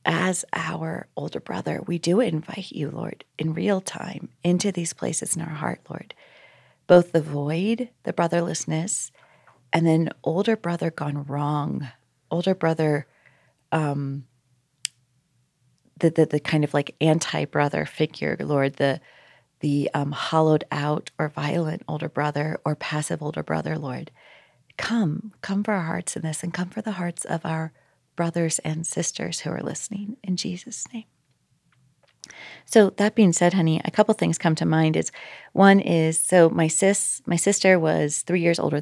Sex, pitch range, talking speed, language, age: female, 145-180 Hz, 160 wpm, English, 40-59